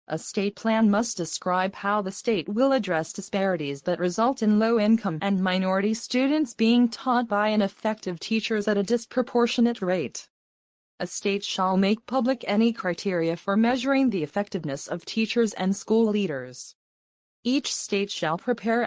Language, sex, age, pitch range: English, female, 20-39, 180-230 Hz